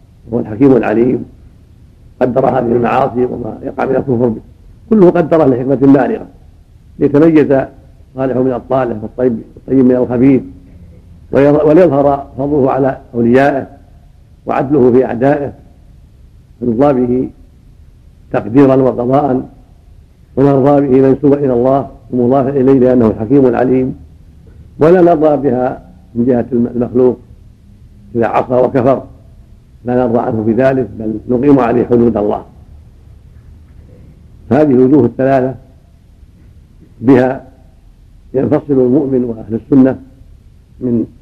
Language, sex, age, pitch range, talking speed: Arabic, male, 70-89, 110-135 Hz, 105 wpm